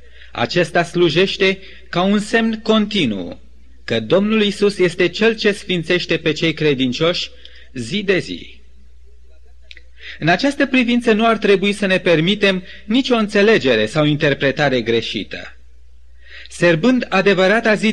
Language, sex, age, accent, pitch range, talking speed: Romanian, male, 30-49, native, 135-195 Hz, 120 wpm